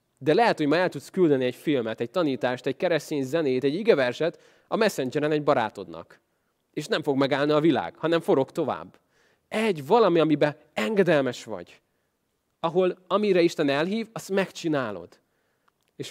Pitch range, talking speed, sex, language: 130-165 Hz, 155 wpm, male, Hungarian